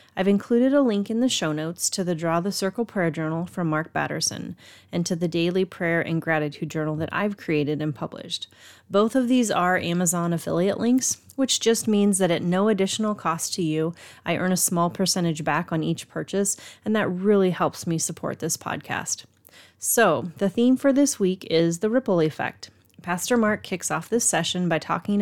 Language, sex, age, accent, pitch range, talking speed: English, female, 30-49, American, 170-215 Hz, 200 wpm